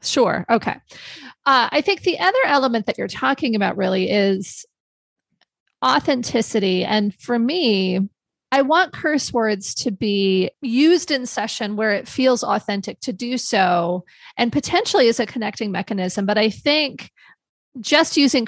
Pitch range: 195-255 Hz